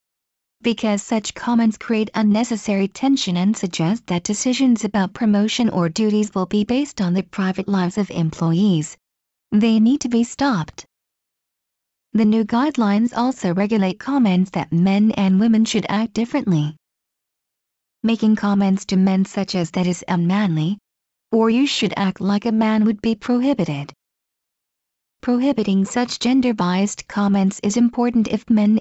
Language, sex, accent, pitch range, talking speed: English, female, American, 190-235 Hz, 140 wpm